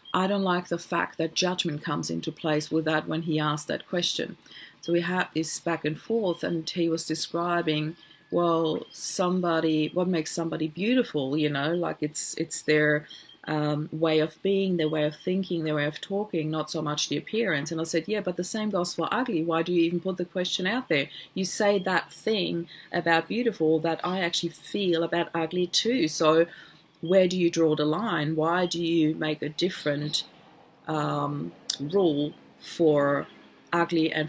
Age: 30-49